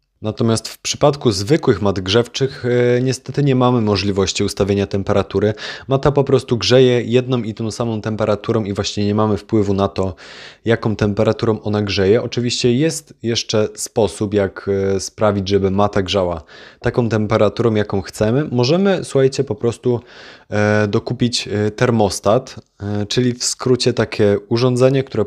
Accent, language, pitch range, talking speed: native, Polish, 105-125 Hz, 135 wpm